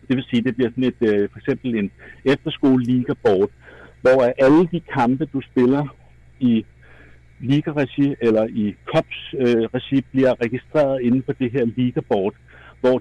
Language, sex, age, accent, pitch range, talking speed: Danish, male, 60-79, native, 115-130 Hz, 150 wpm